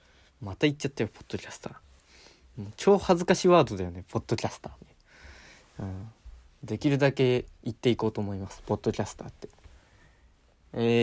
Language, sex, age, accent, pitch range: Japanese, male, 20-39, native, 100-135 Hz